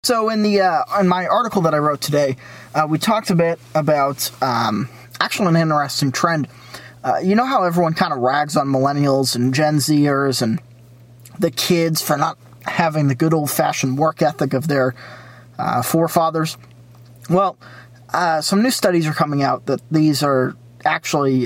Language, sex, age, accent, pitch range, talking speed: English, male, 20-39, American, 125-170 Hz, 175 wpm